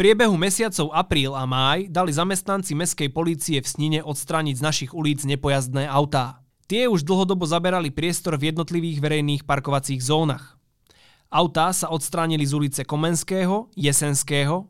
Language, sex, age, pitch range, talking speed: Slovak, male, 20-39, 135-170 Hz, 145 wpm